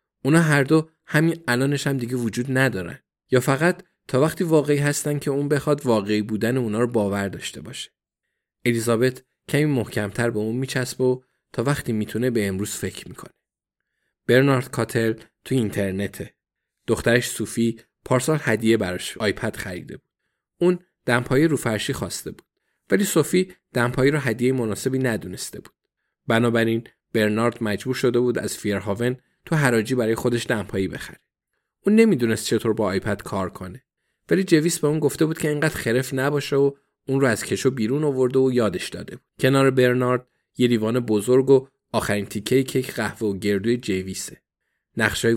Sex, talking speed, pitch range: male, 155 wpm, 110-135 Hz